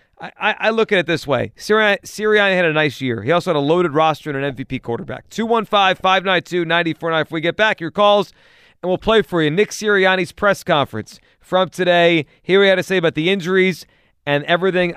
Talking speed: 215 wpm